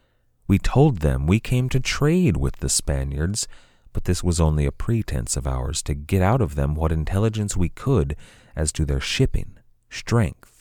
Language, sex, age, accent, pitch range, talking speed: English, male, 30-49, American, 75-110 Hz, 180 wpm